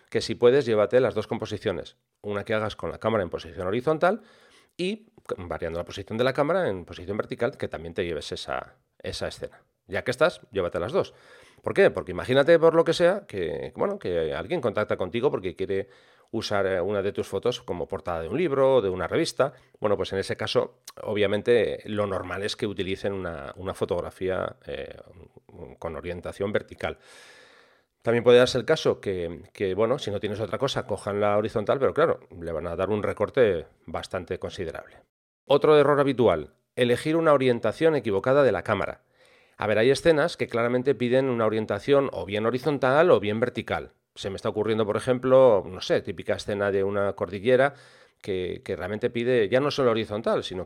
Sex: male